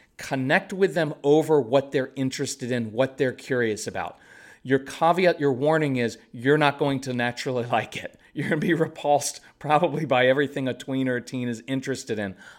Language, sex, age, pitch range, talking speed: English, male, 40-59, 120-160 Hz, 190 wpm